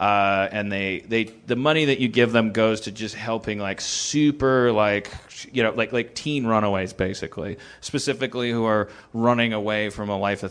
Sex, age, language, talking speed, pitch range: male, 30-49, English, 195 wpm, 100-125 Hz